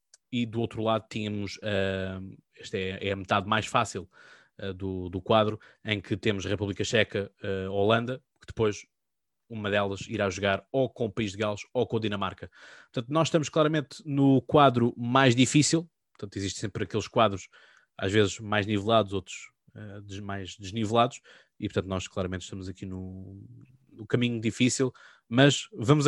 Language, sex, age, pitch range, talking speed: Portuguese, male, 20-39, 95-115 Hz, 165 wpm